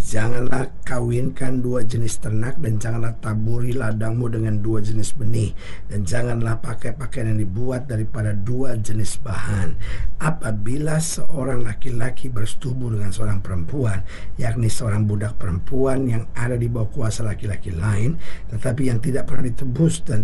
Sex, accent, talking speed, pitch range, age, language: male, native, 140 wpm, 105-125 Hz, 50-69, Indonesian